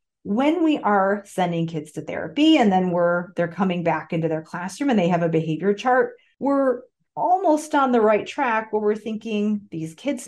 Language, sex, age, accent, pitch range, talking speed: English, female, 40-59, American, 170-240 Hz, 195 wpm